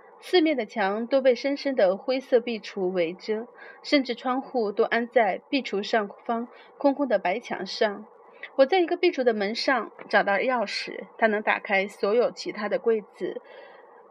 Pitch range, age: 210-280 Hz, 30-49